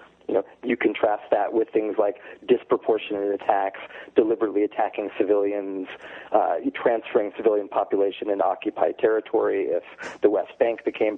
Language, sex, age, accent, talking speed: English, male, 40-59, American, 130 wpm